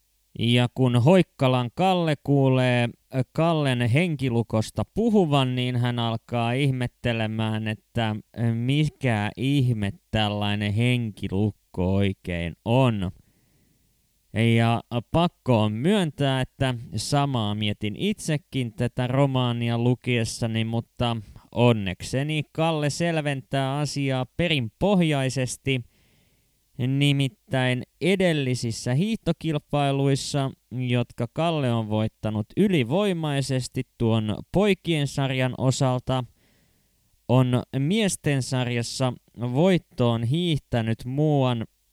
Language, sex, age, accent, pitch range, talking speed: Finnish, male, 20-39, native, 115-140 Hz, 75 wpm